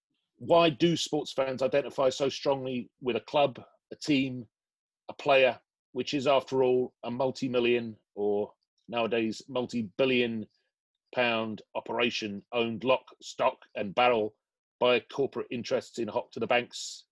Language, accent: English, British